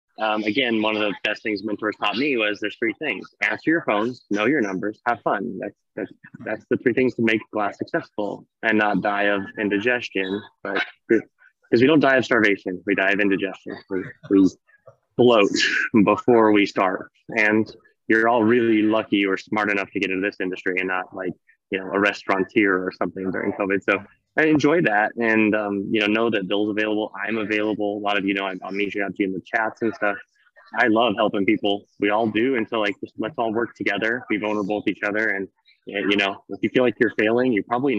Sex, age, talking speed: male, 20-39, 220 wpm